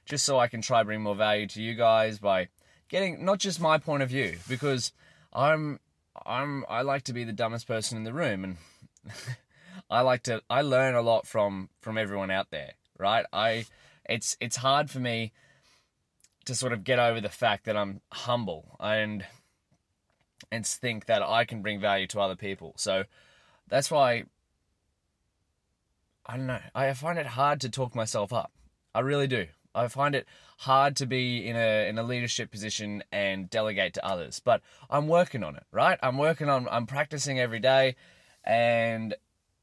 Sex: male